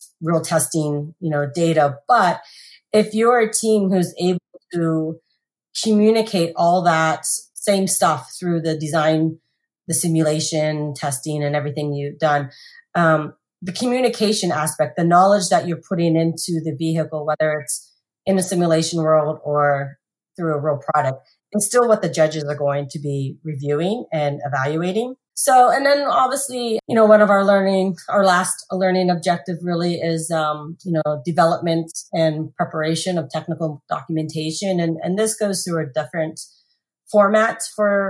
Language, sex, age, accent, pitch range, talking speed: English, female, 30-49, American, 155-195 Hz, 155 wpm